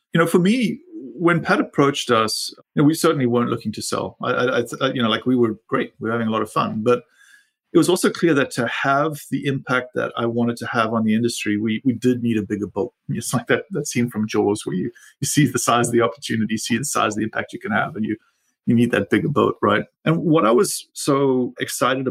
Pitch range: 110-140 Hz